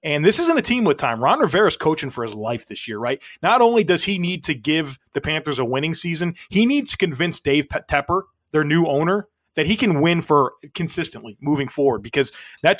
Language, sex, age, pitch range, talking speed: English, male, 30-49, 135-175 Hz, 220 wpm